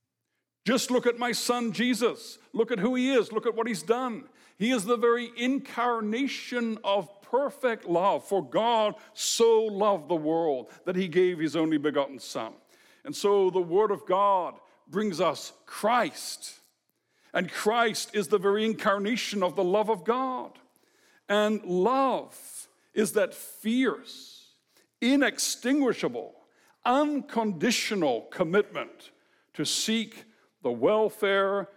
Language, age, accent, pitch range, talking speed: English, 60-79, American, 180-240 Hz, 130 wpm